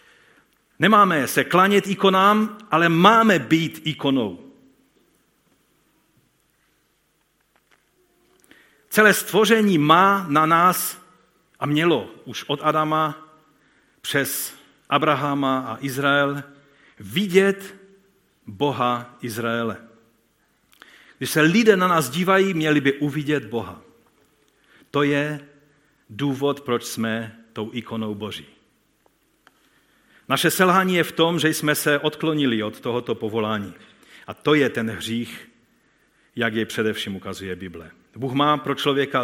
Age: 50-69